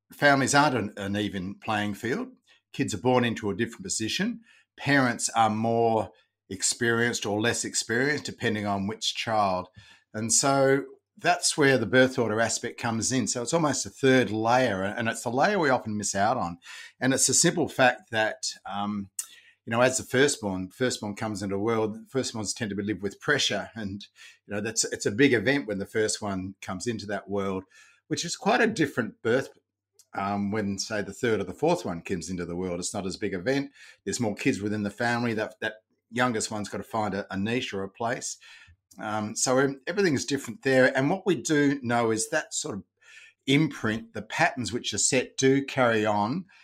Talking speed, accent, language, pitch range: 200 wpm, Australian, English, 105-130 Hz